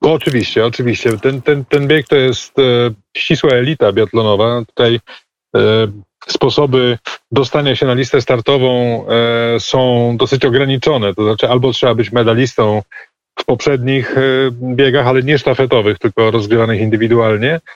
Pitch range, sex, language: 115-135 Hz, male, Polish